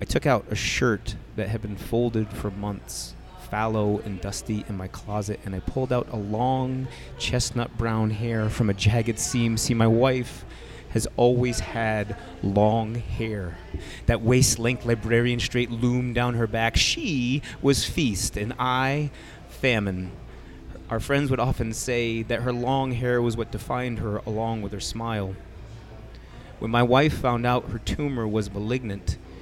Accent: American